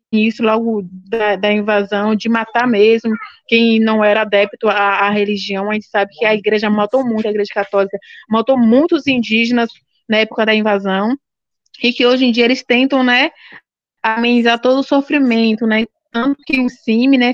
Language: Portuguese